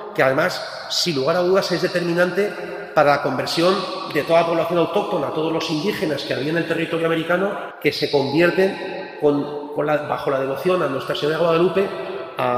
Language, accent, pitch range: Spanish, Spanish, 155-195 Hz